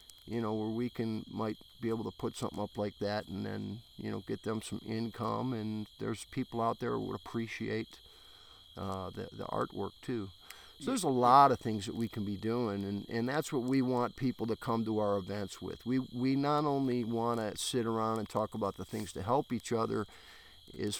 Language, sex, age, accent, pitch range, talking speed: English, male, 50-69, American, 105-125 Hz, 215 wpm